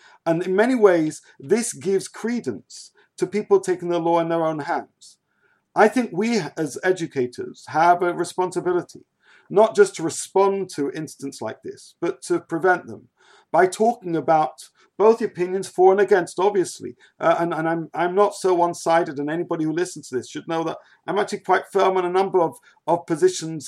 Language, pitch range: English, 160-210 Hz